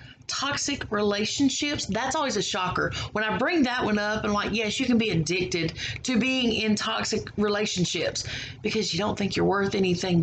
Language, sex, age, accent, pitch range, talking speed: English, female, 30-49, American, 155-230 Hz, 180 wpm